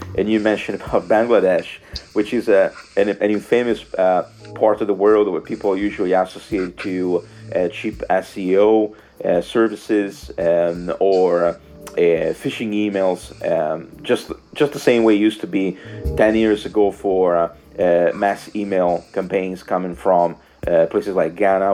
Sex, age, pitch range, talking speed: male, 30-49, 85-105 Hz, 155 wpm